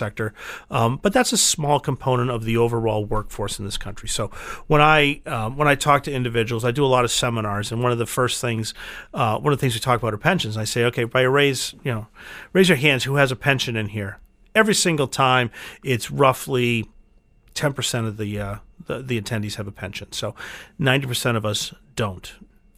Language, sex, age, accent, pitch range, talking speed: English, male, 40-59, American, 110-135 Hz, 220 wpm